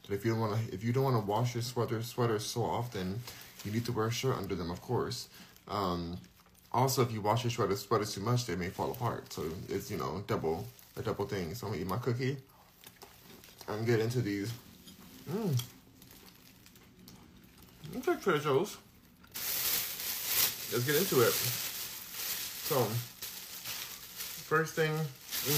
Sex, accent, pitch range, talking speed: male, American, 95-125 Hz, 155 wpm